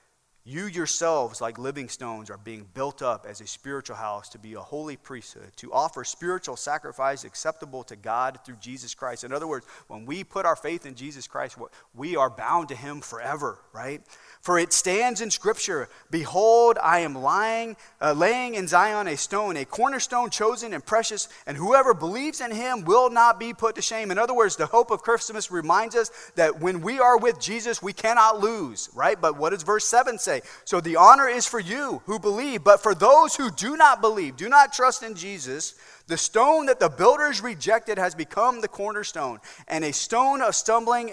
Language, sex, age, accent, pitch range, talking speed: English, male, 30-49, American, 145-235 Hz, 200 wpm